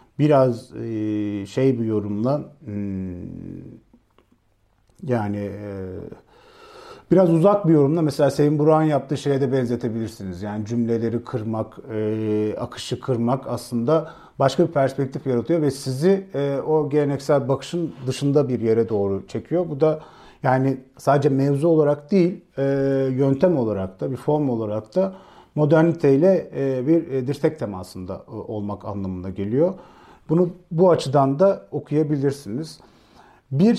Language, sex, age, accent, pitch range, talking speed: Turkish, male, 40-59, native, 120-155 Hz, 110 wpm